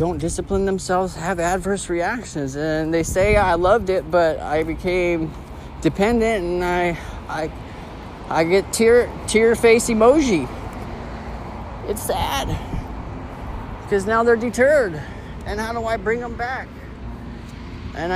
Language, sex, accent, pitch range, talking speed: English, male, American, 135-210 Hz, 130 wpm